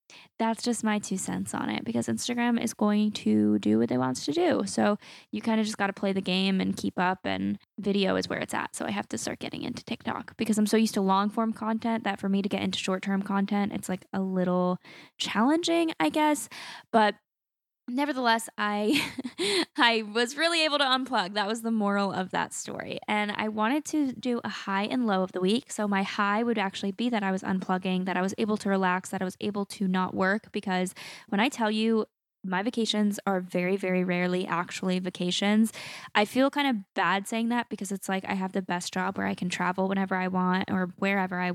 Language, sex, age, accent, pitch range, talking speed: English, female, 10-29, American, 185-220 Hz, 230 wpm